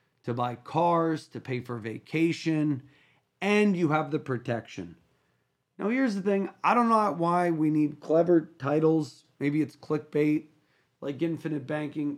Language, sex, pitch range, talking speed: English, male, 140-175 Hz, 150 wpm